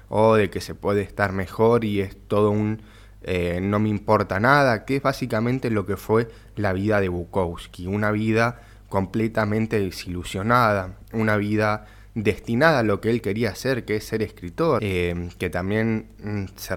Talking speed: 170 wpm